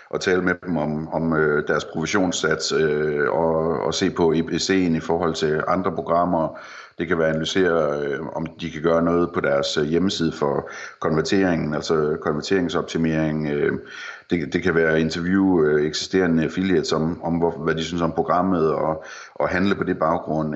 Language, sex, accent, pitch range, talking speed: Danish, male, native, 80-90 Hz, 160 wpm